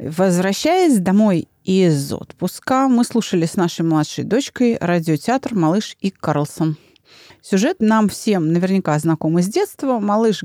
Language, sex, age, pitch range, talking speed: Russian, female, 30-49, 170-260 Hz, 125 wpm